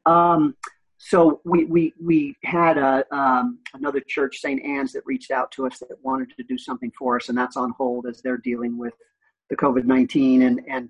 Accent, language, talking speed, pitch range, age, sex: American, English, 200 wpm, 125-145 Hz, 50-69, male